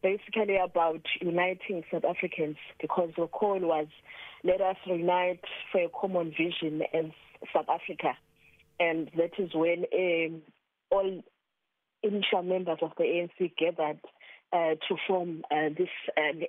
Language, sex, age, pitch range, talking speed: English, female, 20-39, 165-190 Hz, 135 wpm